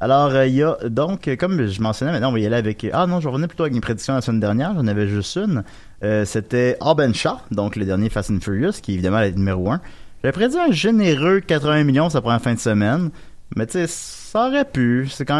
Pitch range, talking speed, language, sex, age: 105-145 Hz, 255 wpm, French, male, 30-49